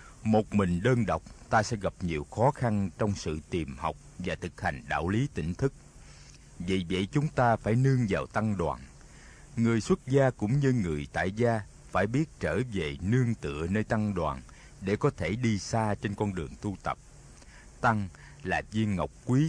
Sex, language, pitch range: male, Vietnamese, 95-125 Hz